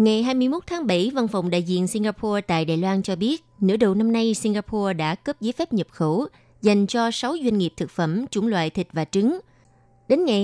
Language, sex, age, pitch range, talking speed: Vietnamese, female, 20-39, 170-230 Hz, 225 wpm